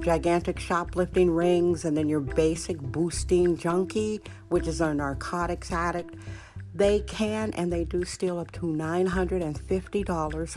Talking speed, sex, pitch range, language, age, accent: 135 wpm, female, 150-185 Hz, English, 60-79, American